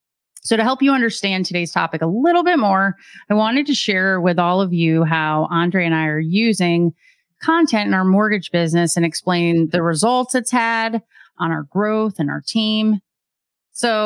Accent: American